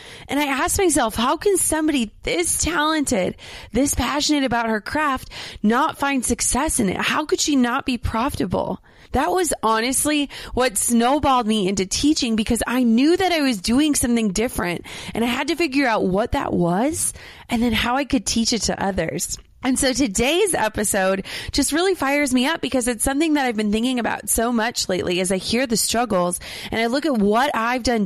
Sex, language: female, English